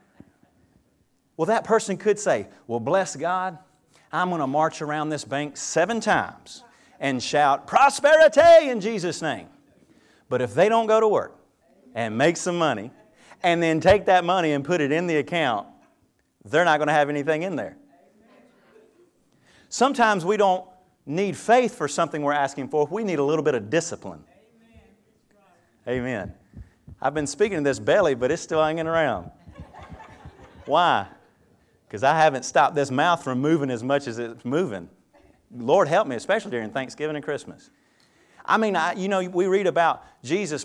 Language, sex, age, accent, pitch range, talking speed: English, male, 40-59, American, 145-195 Hz, 170 wpm